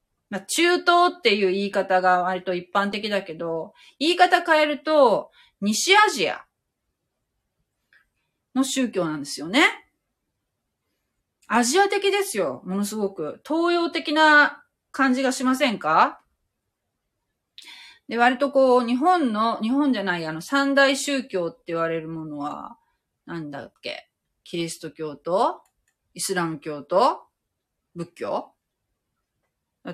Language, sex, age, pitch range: Japanese, female, 30-49, 170-285 Hz